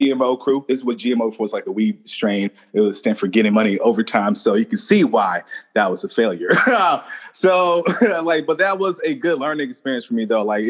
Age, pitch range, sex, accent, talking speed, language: 30-49, 120-160 Hz, male, American, 225 wpm, English